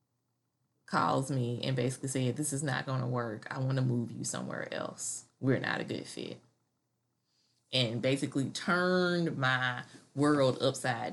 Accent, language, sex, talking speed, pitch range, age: American, English, female, 155 wpm, 125-155 Hz, 20-39